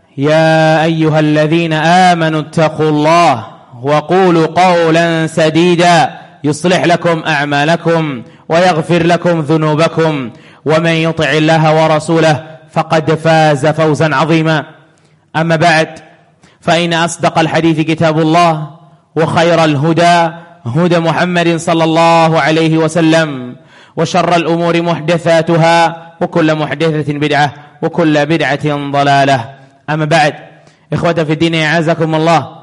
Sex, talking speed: male, 95 wpm